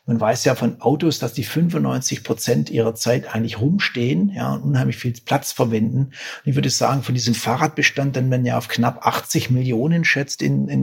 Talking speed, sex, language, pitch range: 195 wpm, male, German, 115-145 Hz